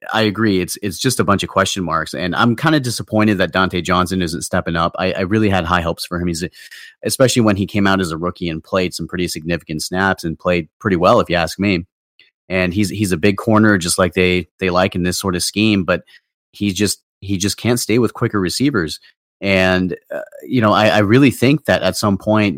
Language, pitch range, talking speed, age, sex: English, 85-100 Hz, 240 wpm, 30-49, male